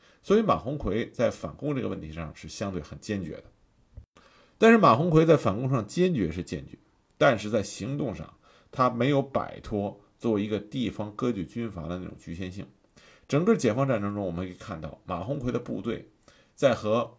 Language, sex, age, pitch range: Chinese, male, 50-69, 90-130 Hz